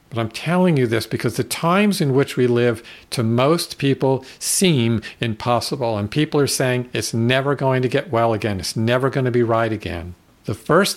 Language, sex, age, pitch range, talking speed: English, male, 50-69, 110-140 Hz, 200 wpm